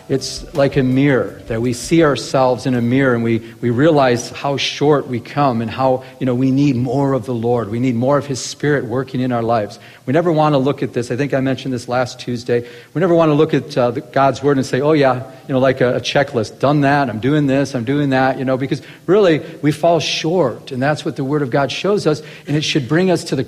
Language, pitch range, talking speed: English, 125-150 Hz, 265 wpm